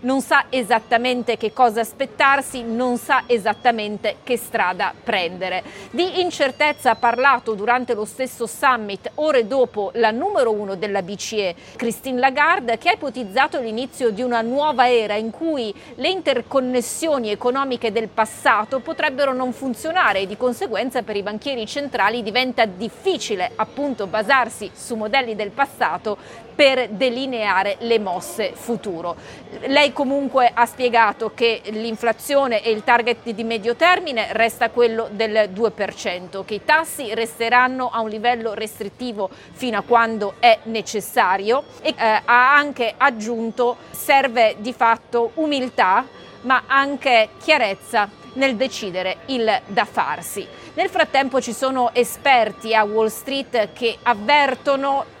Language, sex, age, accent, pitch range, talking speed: Italian, female, 40-59, native, 220-270 Hz, 135 wpm